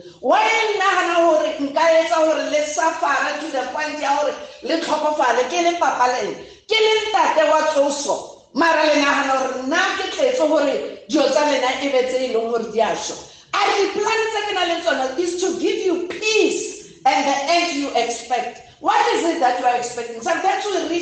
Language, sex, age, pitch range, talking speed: English, female, 50-69, 255-340 Hz, 90 wpm